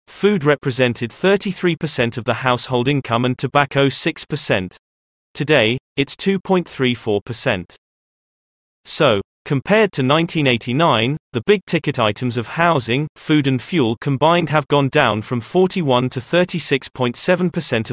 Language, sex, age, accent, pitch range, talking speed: English, male, 30-49, British, 120-165 Hz, 115 wpm